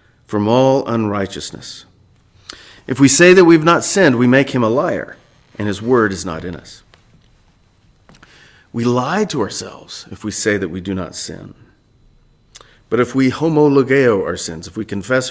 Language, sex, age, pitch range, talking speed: English, male, 40-59, 100-135 Hz, 170 wpm